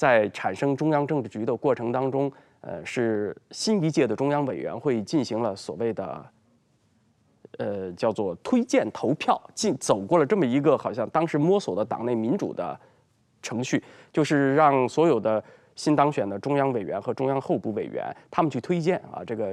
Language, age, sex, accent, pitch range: Chinese, 20-39, male, native, 115-160 Hz